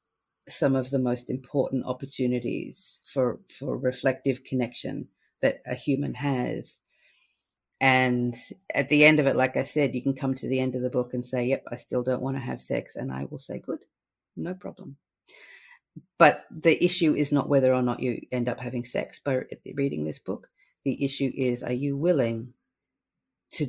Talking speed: 185 wpm